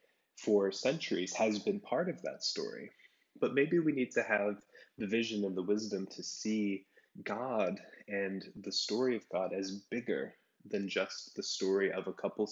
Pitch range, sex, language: 95-125 Hz, male, English